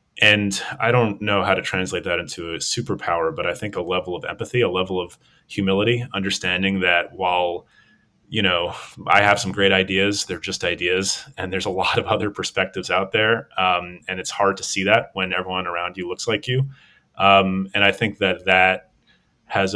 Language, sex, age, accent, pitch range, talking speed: English, male, 30-49, American, 90-105 Hz, 195 wpm